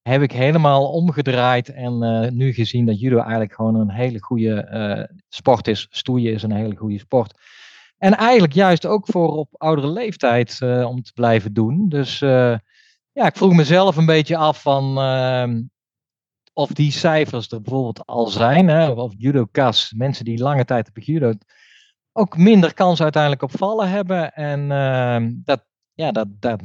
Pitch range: 115-150 Hz